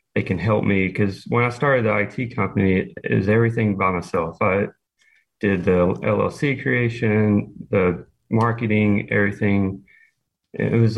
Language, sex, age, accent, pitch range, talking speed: English, male, 30-49, American, 95-110 Hz, 140 wpm